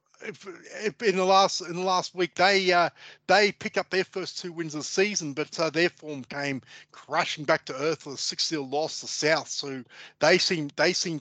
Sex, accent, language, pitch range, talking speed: male, Australian, English, 135-165 Hz, 225 wpm